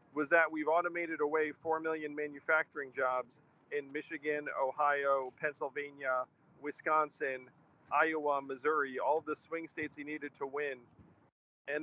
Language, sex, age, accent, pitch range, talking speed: English, male, 40-59, American, 140-160 Hz, 125 wpm